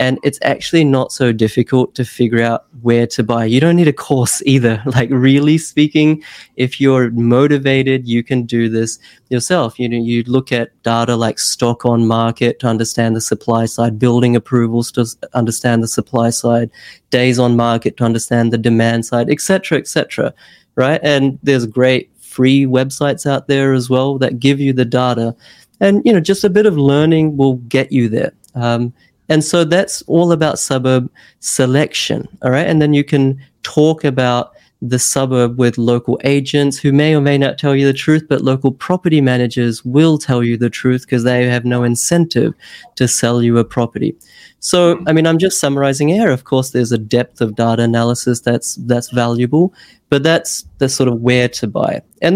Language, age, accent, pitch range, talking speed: English, 20-39, Australian, 120-145 Hz, 190 wpm